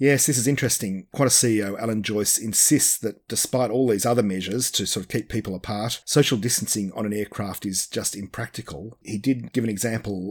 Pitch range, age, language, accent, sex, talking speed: 100-120 Hz, 40-59, English, Australian, male, 200 wpm